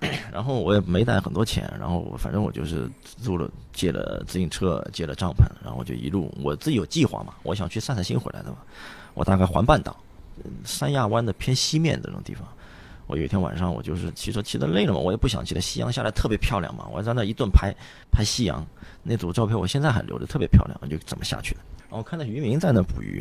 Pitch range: 90-120 Hz